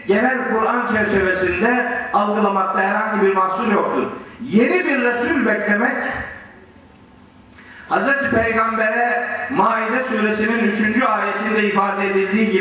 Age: 50-69